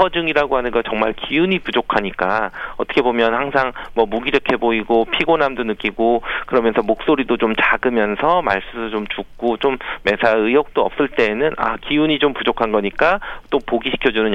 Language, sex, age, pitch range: Korean, male, 40-59, 105-135 Hz